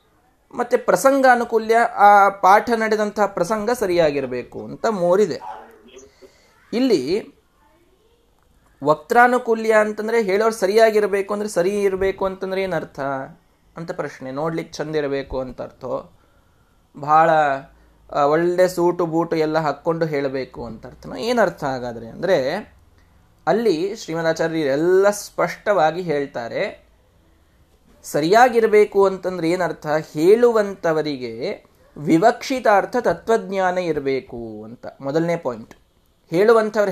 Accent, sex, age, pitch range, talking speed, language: native, male, 20-39, 155-225 Hz, 85 wpm, Kannada